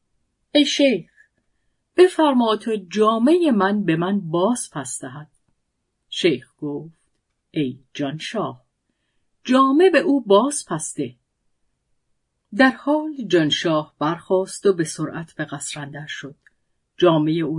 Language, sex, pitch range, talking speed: Persian, female, 155-220 Hz, 110 wpm